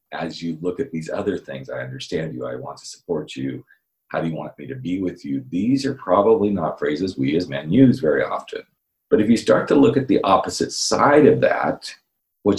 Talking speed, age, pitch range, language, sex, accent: 230 wpm, 40-59, 85-125 Hz, English, male, American